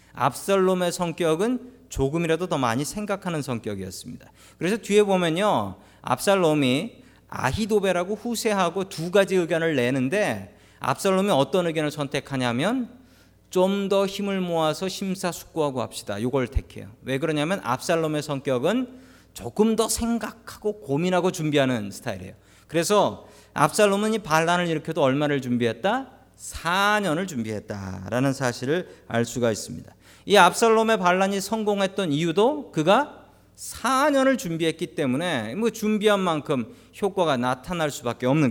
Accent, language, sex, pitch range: native, Korean, male, 130-195 Hz